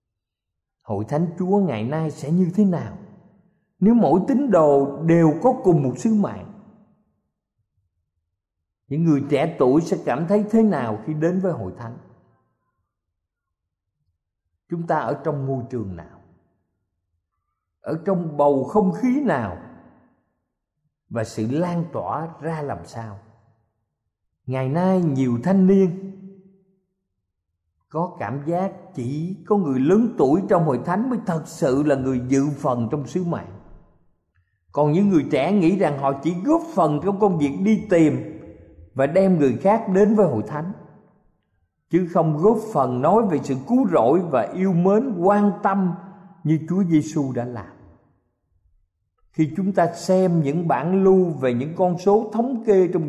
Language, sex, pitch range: Thai, male, 115-190 Hz